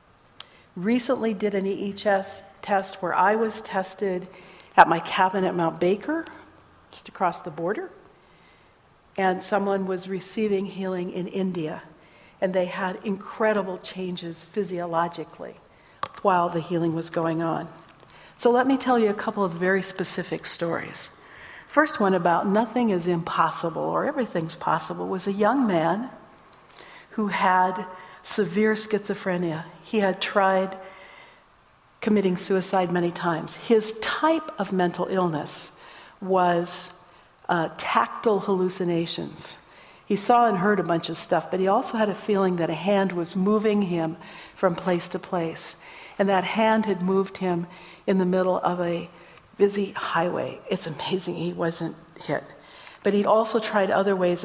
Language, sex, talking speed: English, female, 145 wpm